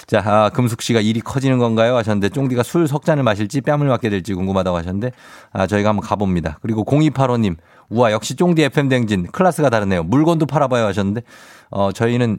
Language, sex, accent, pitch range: Korean, male, native, 90-130 Hz